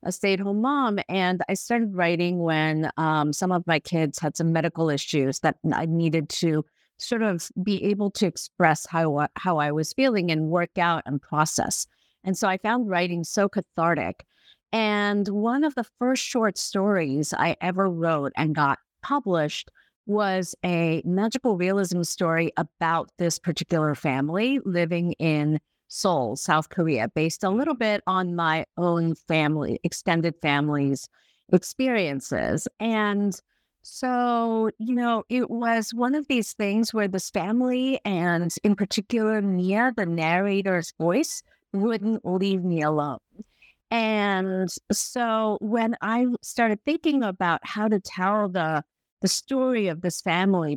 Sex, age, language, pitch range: female, 50-69, English, 165-215 Hz